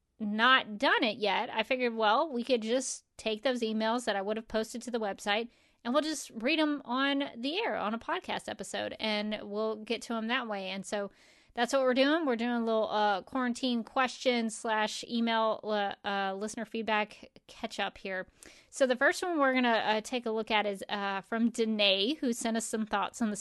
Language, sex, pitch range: English, female, 210-250 Hz